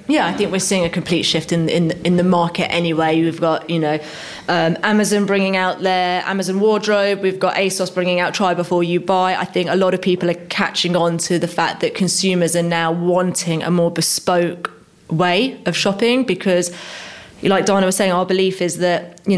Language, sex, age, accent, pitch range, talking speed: English, female, 20-39, British, 175-205 Hz, 210 wpm